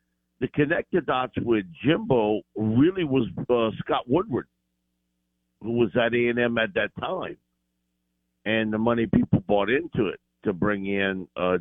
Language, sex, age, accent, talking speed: English, male, 50-69, American, 150 wpm